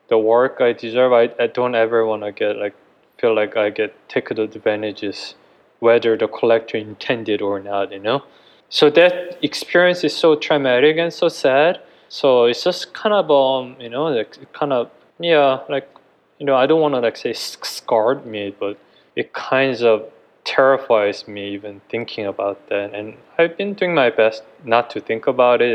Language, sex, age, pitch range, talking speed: English, male, 20-39, 115-150 Hz, 185 wpm